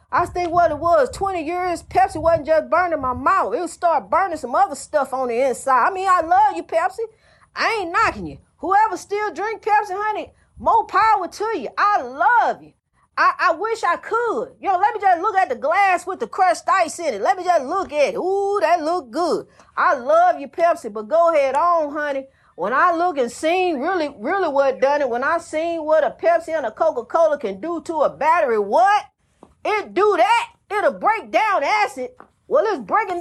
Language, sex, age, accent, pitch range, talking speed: English, female, 40-59, American, 305-395 Hz, 215 wpm